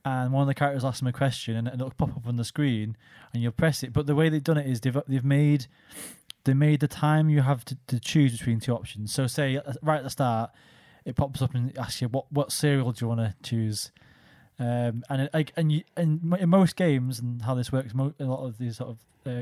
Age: 20-39